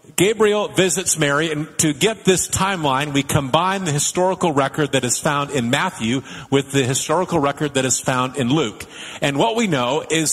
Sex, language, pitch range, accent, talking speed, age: male, English, 140-180 Hz, American, 185 wpm, 50-69